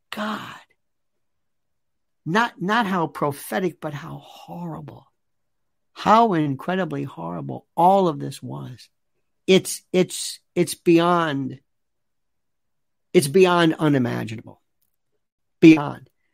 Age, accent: 60-79, American